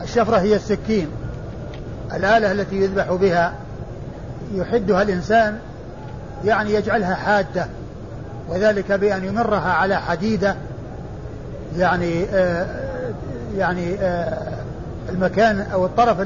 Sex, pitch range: male, 160-210 Hz